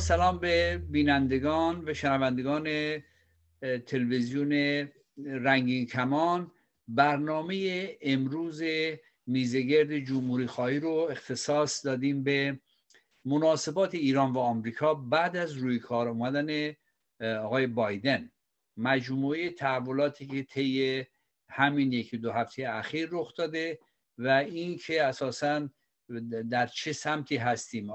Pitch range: 120-145 Hz